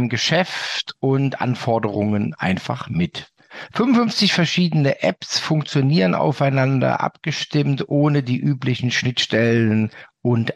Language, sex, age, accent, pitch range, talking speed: German, male, 50-69, German, 140-180 Hz, 90 wpm